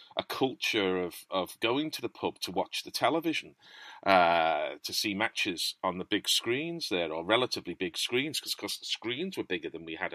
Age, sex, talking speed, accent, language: 40-59, male, 205 wpm, British, English